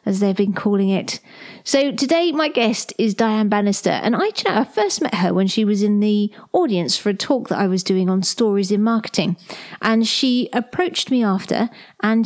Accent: British